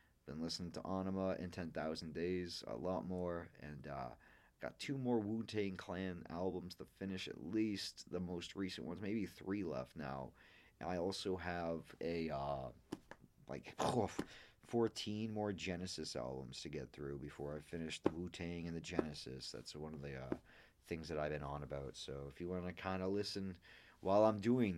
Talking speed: 190 wpm